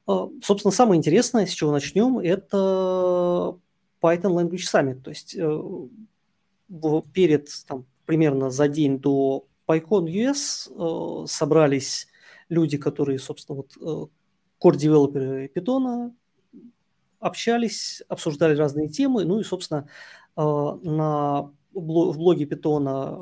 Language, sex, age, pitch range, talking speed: Russian, male, 30-49, 150-185 Hz, 115 wpm